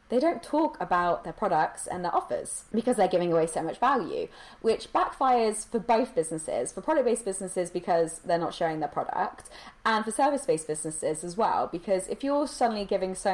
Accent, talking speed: British, 190 wpm